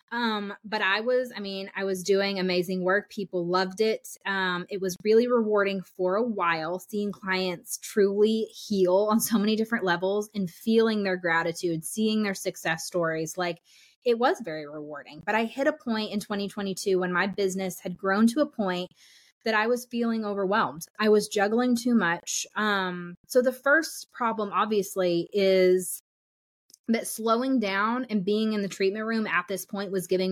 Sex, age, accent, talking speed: female, 20-39, American, 180 wpm